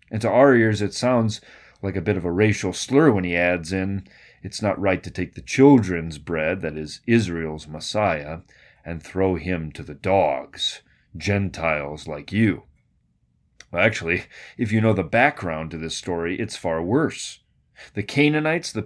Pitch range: 95-130 Hz